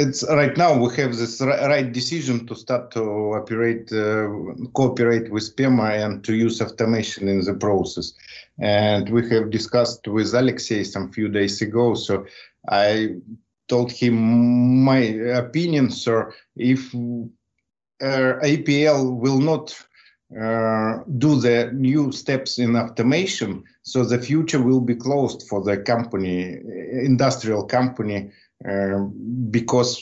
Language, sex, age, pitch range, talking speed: English, male, 50-69, 105-125 Hz, 130 wpm